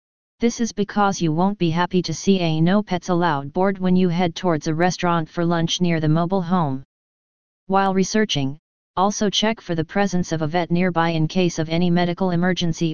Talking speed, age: 190 wpm, 30-49